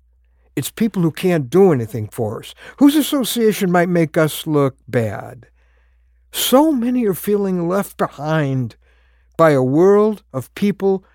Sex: male